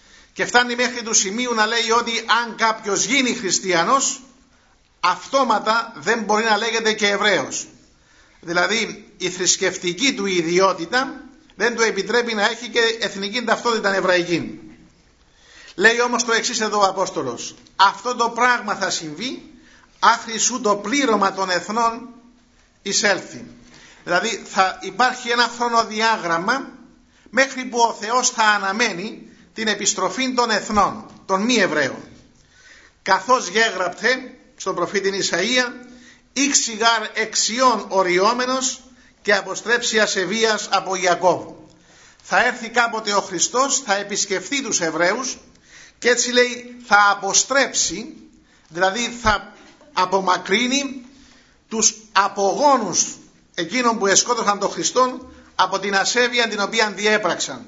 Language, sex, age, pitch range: Greek, male, 50-69, 195-245 Hz